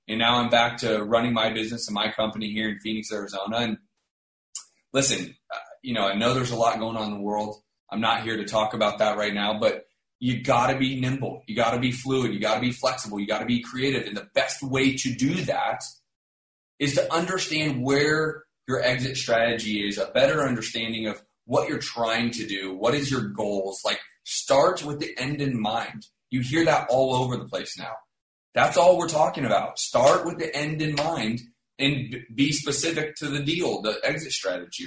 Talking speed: 210 wpm